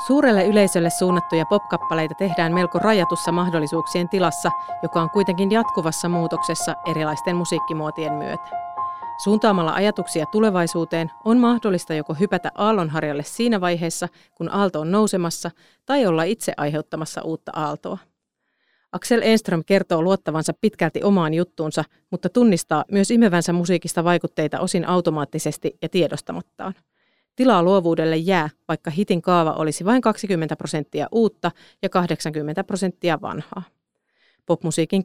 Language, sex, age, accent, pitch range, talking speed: Finnish, female, 30-49, native, 165-195 Hz, 120 wpm